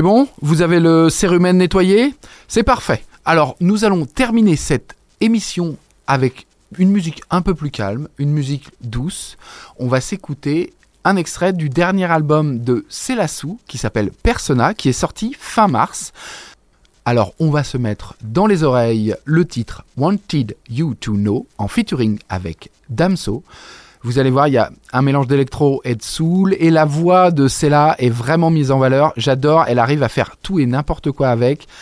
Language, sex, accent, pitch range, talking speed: French, male, French, 120-165 Hz, 175 wpm